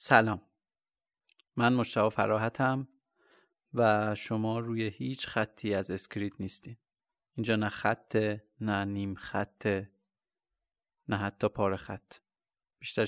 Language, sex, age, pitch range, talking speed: Persian, male, 30-49, 110-130 Hz, 105 wpm